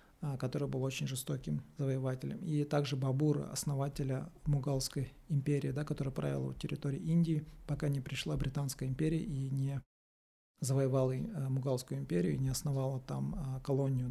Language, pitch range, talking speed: Russian, 130-150 Hz, 135 wpm